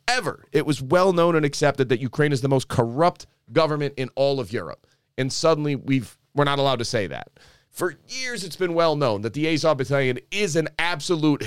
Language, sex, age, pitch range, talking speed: English, male, 30-49, 130-160 Hz, 220 wpm